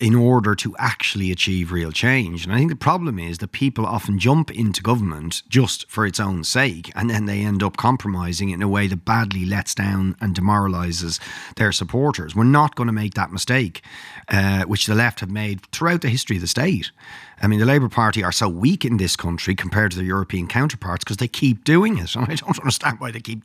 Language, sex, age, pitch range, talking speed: English, male, 40-59, 100-135 Hz, 225 wpm